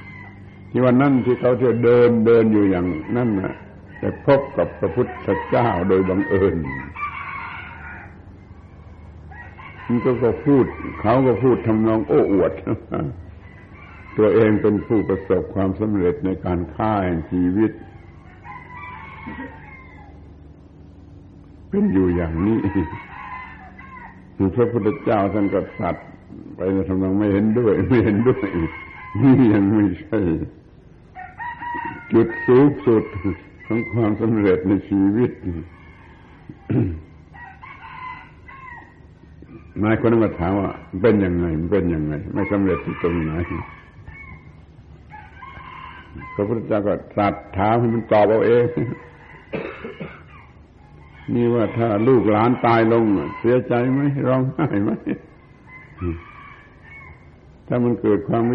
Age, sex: 70-89, male